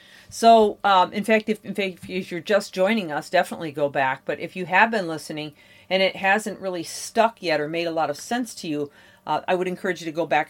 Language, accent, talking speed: English, American, 235 wpm